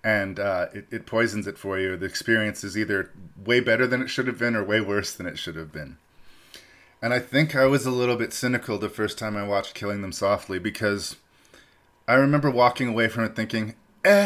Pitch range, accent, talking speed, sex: 100-120 Hz, American, 225 wpm, male